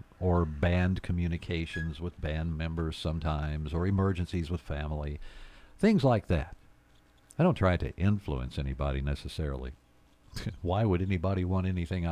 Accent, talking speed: American, 130 wpm